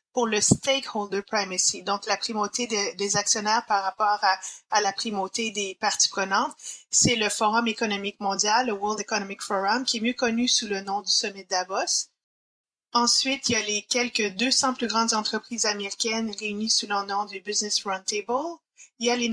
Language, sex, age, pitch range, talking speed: French, female, 30-49, 200-240 Hz, 185 wpm